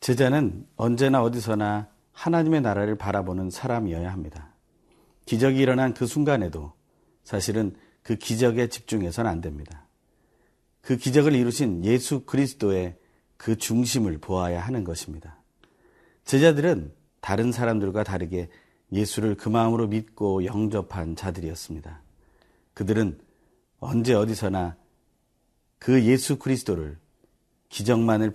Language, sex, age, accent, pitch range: Korean, male, 40-59, native, 95-130 Hz